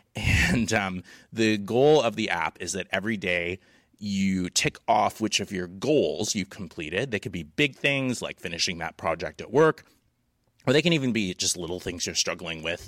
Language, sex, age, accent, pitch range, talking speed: English, male, 30-49, American, 90-115 Hz, 195 wpm